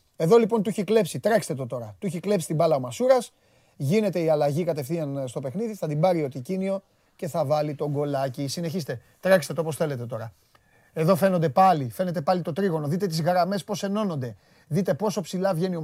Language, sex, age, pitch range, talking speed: Greek, male, 30-49, 160-215 Hz, 205 wpm